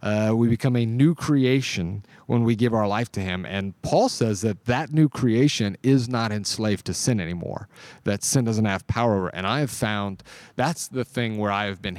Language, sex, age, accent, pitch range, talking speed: English, male, 30-49, American, 95-120 Hz, 210 wpm